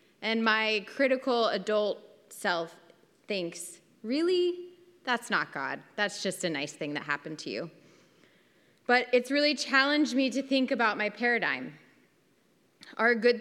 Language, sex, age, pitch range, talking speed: English, female, 20-39, 180-230 Hz, 140 wpm